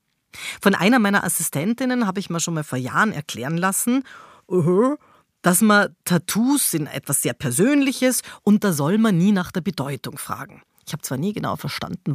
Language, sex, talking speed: German, female, 175 wpm